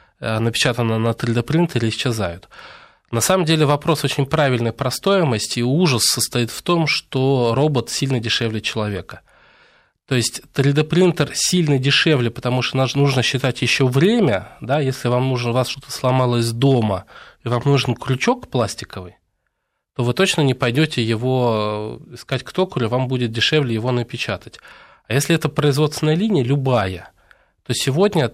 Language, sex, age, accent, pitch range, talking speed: Russian, male, 20-39, native, 115-140 Hz, 145 wpm